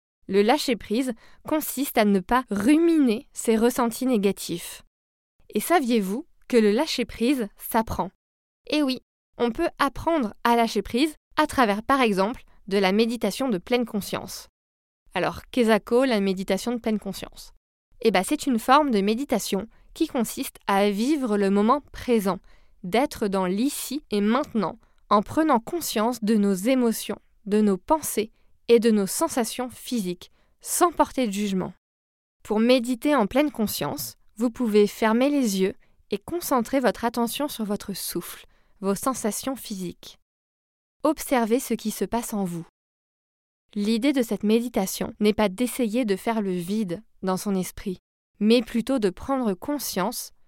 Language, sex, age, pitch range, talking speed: French, female, 20-39, 200-255 Hz, 150 wpm